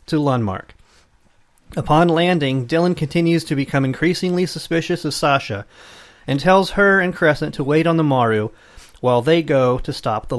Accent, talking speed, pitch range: American, 160 wpm, 130-170 Hz